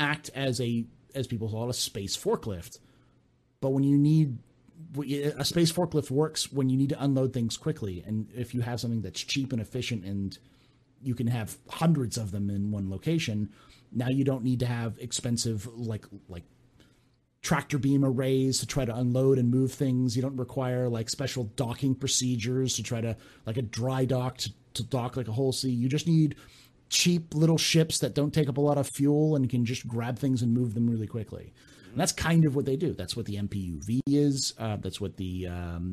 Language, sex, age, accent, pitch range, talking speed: English, male, 30-49, American, 115-140 Hz, 210 wpm